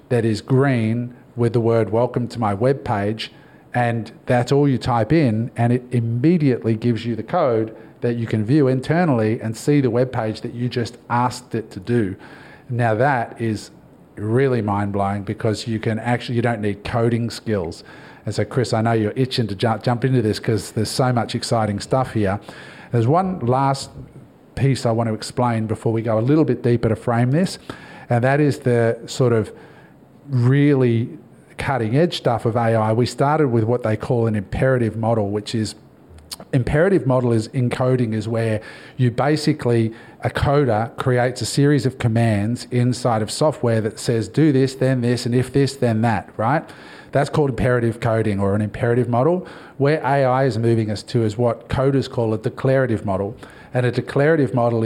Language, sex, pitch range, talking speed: English, male, 110-130 Hz, 185 wpm